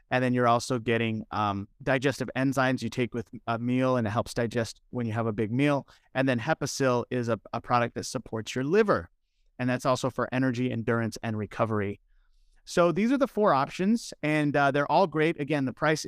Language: English